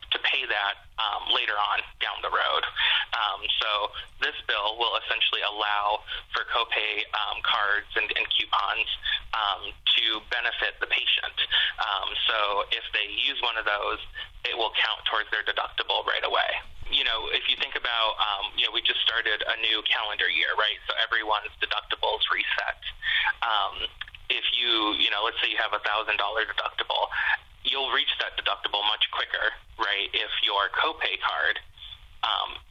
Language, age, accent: English, 20-39, American